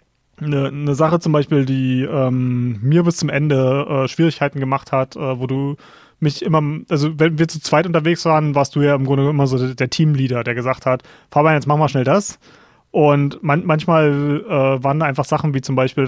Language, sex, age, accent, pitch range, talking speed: German, male, 30-49, German, 135-170 Hz, 215 wpm